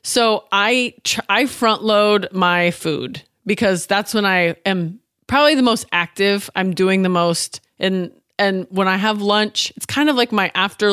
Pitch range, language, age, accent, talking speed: 175-225 Hz, English, 20-39, American, 175 wpm